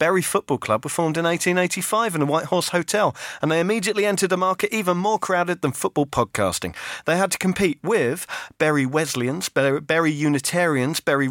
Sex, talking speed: male, 180 wpm